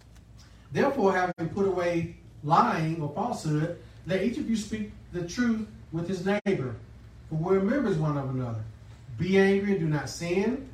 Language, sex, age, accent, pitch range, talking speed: English, male, 40-59, American, 140-180 Hz, 170 wpm